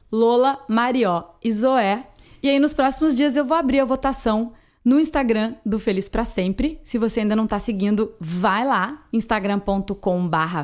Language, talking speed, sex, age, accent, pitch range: Portuguese, 165 wpm, female, 20-39, Brazilian, 195-255 Hz